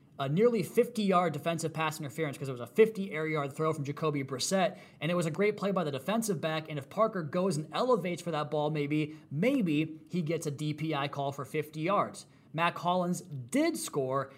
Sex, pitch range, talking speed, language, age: male, 140-175 Hz, 210 wpm, English, 20-39